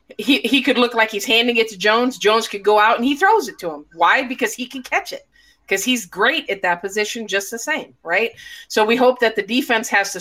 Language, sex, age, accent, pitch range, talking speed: English, female, 30-49, American, 200-260 Hz, 260 wpm